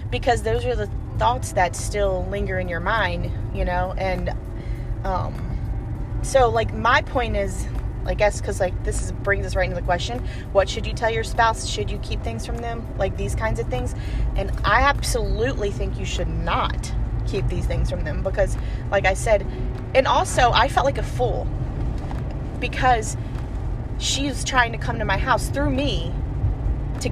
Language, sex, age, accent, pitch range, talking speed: English, female, 30-49, American, 100-115 Hz, 180 wpm